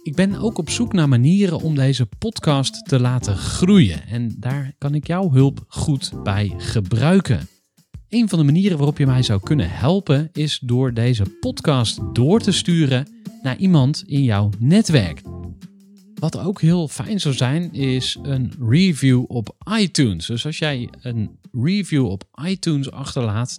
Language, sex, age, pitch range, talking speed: Dutch, male, 40-59, 120-165 Hz, 160 wpm